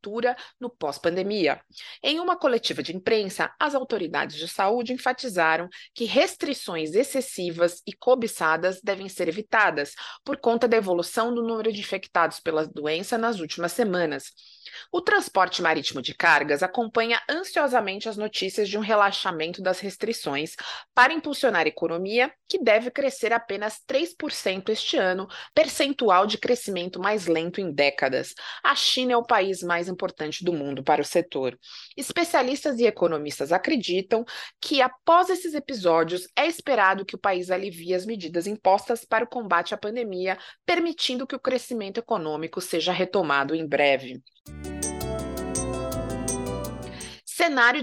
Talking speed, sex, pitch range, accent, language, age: 140 wpm, female, 170-245 Hz, Brazilian, Portuguese, 20-39